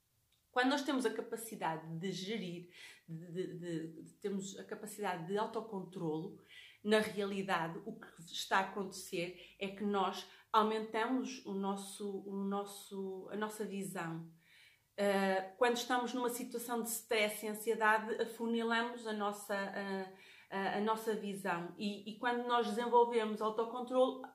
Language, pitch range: Portuguese, 200-235 Hz